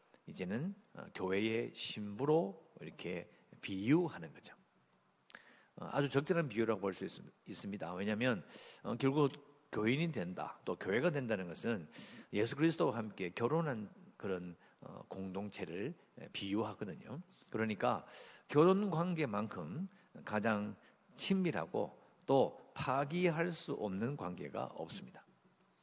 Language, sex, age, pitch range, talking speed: English, male, 50-69, 105-165 Hz, 85 wpm